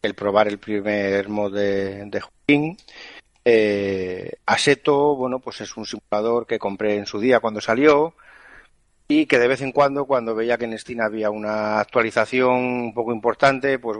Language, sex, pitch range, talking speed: Spanish, male, 105-130 Hz, 165 wpm